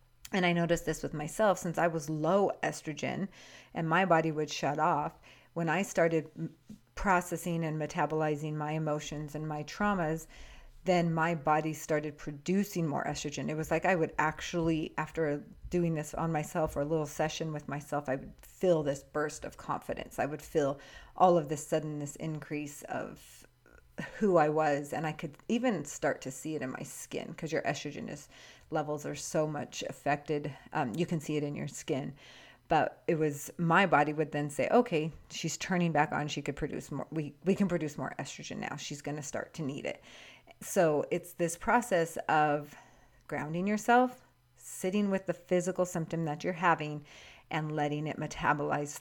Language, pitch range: English, 150-175 Hz